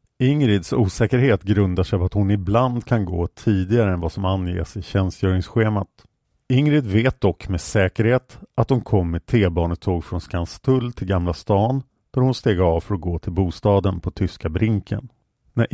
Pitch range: 95-125 Hz